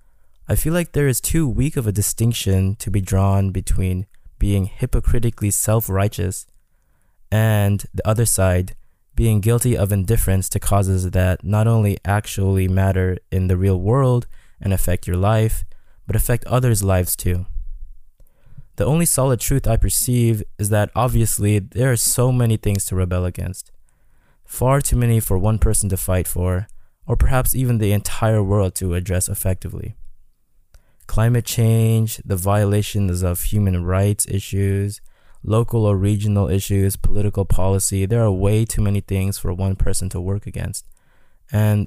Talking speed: 150 wpm